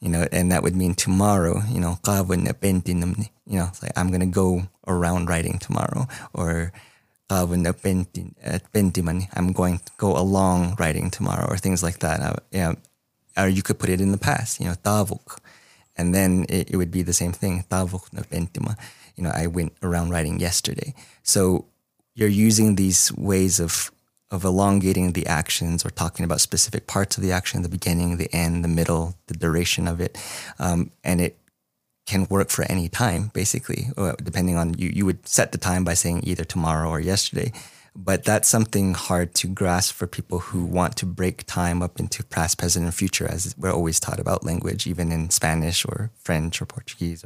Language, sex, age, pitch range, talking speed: English, male, 20-39, 85-100 Hz, 180 wpm